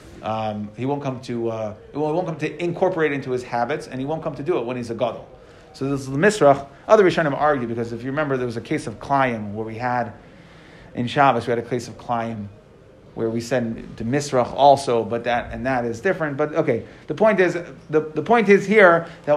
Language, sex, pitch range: English, male, 130-190 Hz